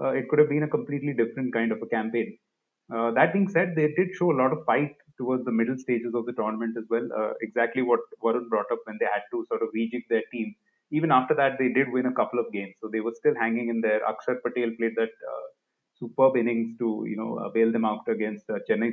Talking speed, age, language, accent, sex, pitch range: 255 wpm, 30-49, English, Indian, male, 115-150 Hz